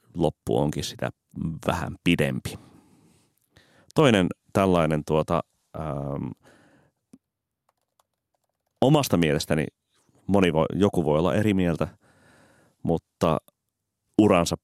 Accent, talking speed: native, 80 wpm